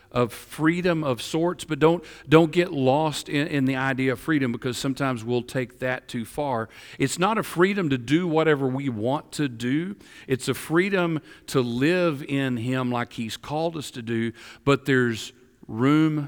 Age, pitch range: 50-69, 115-150 Hz